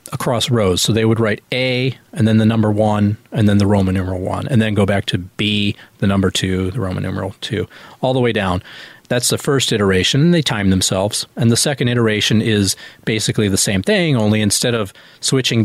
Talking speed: 210 wpm